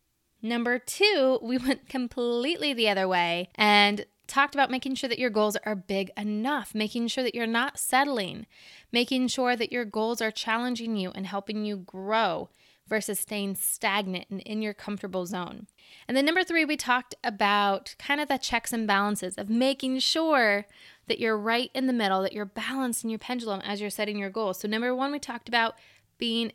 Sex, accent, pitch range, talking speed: female, American, 205-245 Hz, 190 wpm